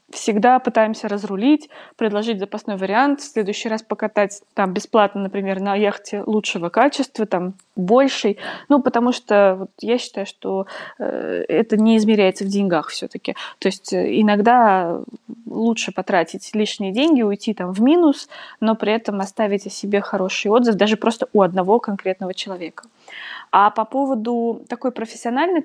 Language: Russian